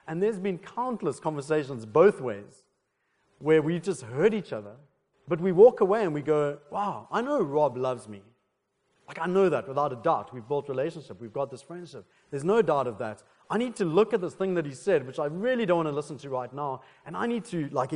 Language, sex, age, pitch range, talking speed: English, male, 40-59, 135-185 Hz, 235 wpm